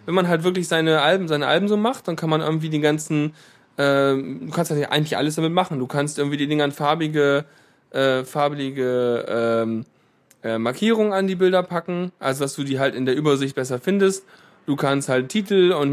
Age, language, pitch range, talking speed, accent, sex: 20-39, German, 145-180 Hz, 205 wpm, German, male